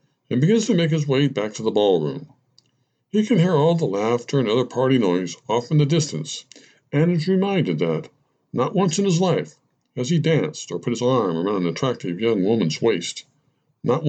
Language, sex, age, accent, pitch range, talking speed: English, male, 60-79, American, 130-165 Hz, 200 wpm